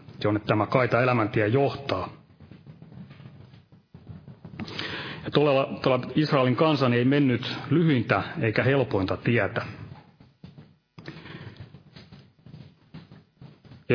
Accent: native